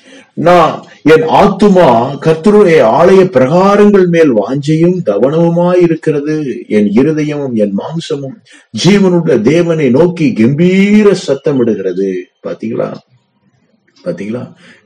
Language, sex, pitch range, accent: Tamil, male, 105-175 Hz, native